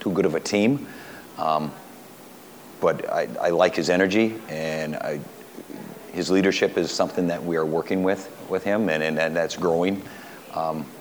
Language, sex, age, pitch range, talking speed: English, male, 50-69, 80-95 Hz, 165 wpm